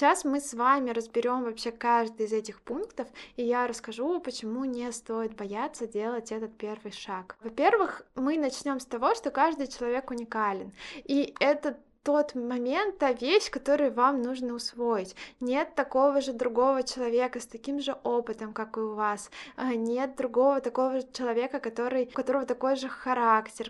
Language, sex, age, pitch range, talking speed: Russian, female, 20-39, 230-270 Hz, 160 wpm